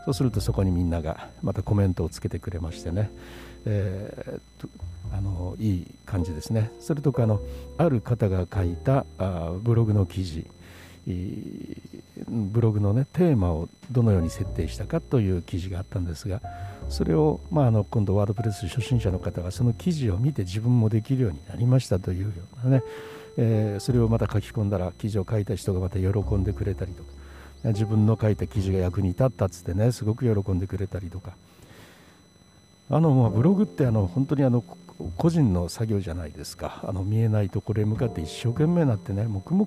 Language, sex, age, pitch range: Japanese, male, 60-79, 90-115 Hz